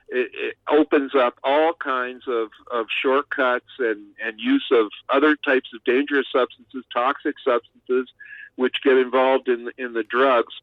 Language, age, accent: English, 50-69, American